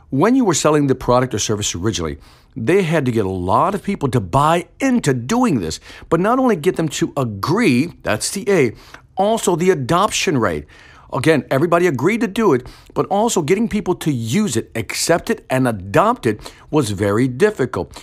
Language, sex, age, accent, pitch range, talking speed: English, male, 50-69, American, 115-175 Hz, 190 wpm